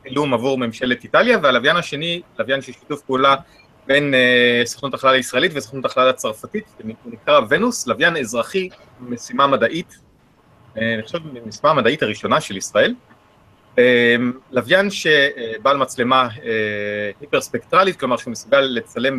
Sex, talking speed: male, 130 wpm